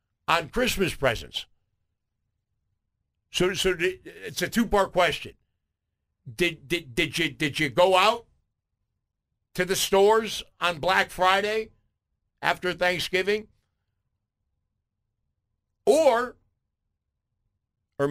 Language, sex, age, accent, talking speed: English, male, 60-79, American, 95 wpm